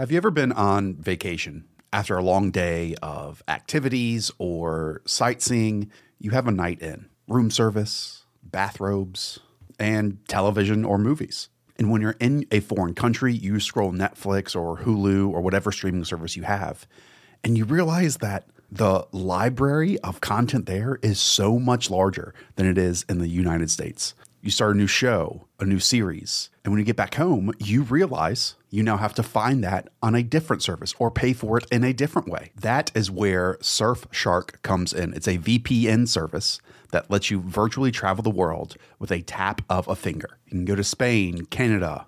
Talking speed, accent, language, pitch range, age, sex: 180 wpm, American, English, 95-115 Hz, 30-49, male